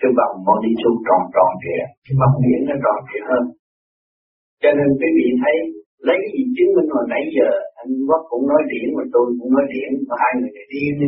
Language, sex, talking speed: Vietnamese, male, 235 wpm